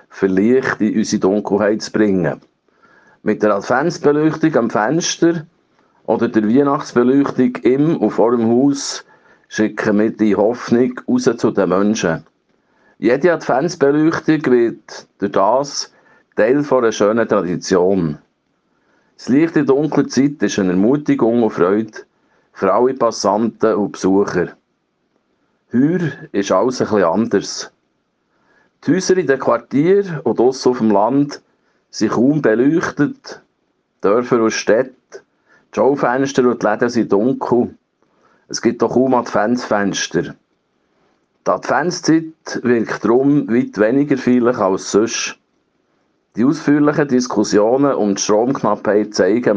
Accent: Swiss